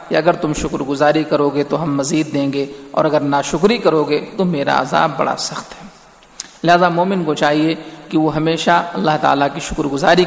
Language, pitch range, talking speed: Urdu, 150-170 Hz, 205 wpm